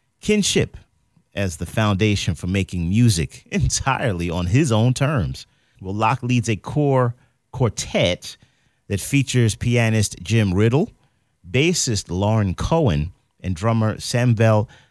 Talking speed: 115 wpm